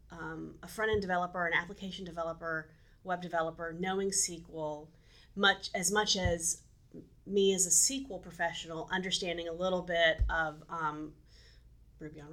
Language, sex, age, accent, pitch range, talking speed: English, female, 30-49, American, 170-225 Hz, 135 wpm